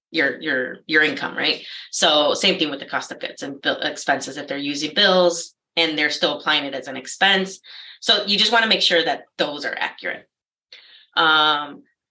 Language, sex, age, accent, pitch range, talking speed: English, female, 20-39, American, 155-190 Hz, 200 wpm